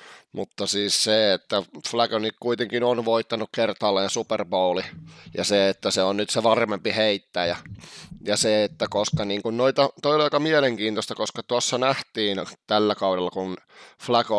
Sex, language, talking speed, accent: male, Finnish, 150 wpm, native